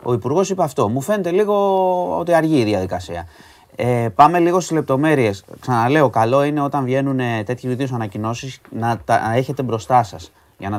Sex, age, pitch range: male, 30-49, 105-140 Hz